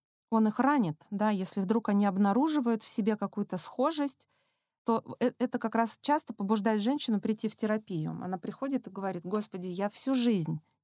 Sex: female